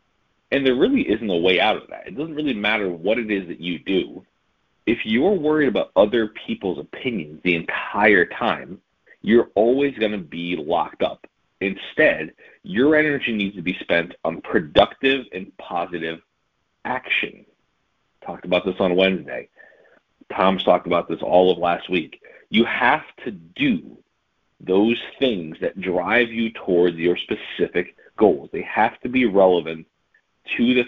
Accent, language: American, English